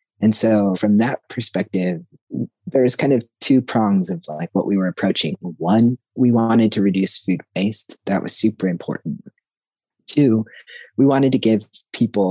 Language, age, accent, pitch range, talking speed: English, 20-39, American, 95-150 Hz, 160 wpm